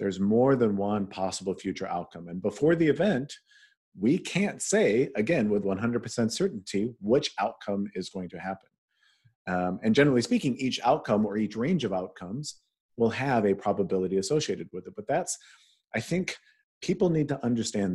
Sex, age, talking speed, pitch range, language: male, 40-59, 165 wpm, 95-120 Hz, English